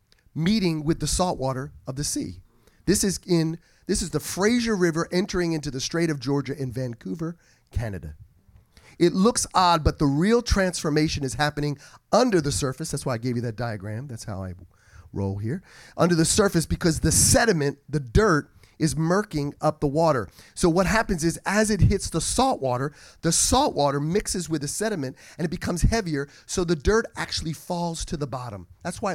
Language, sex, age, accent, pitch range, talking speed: English, male, 30-49, American, 125-175 Hz, 190 wpm